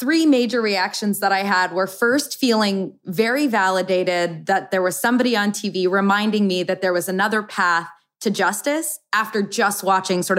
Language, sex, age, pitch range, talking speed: English, female, 20-39, 190-245 Hz, 175 wpm